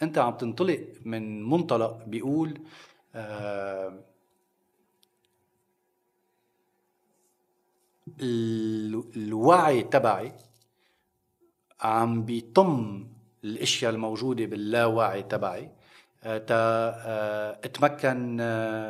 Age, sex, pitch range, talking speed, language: 40-59, male, 105-125 Hz, 60 wpm, Arabic